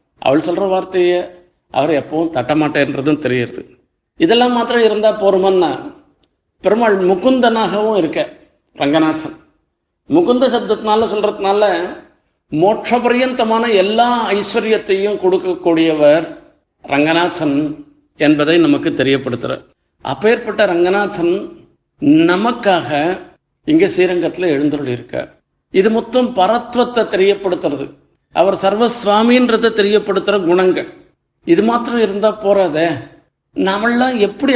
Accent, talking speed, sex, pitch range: native, 85 wpm, male, 170-230 Hz